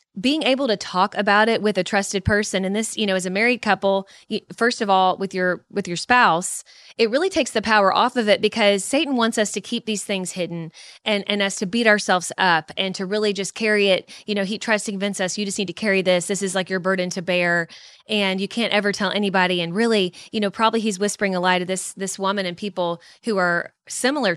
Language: English